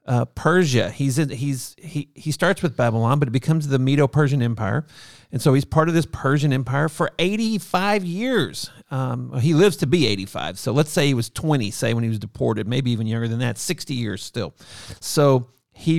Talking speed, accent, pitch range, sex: 205 wpm, American, 130-165 Hz, male